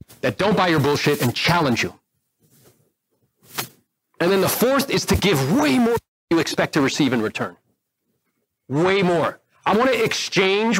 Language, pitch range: English, 145-205 Hz